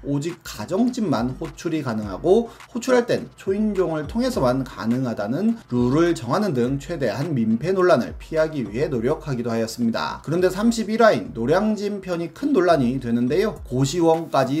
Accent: native